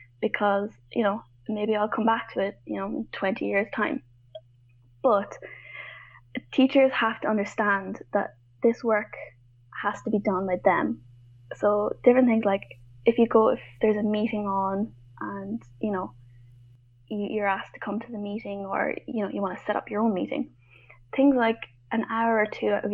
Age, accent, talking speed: 20-39, Irish, 185 wpm